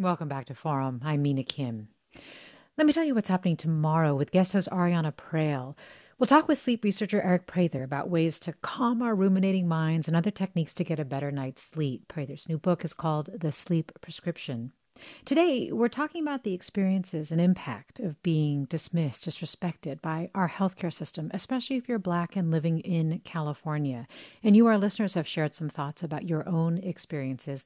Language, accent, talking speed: English, American, 185 wpm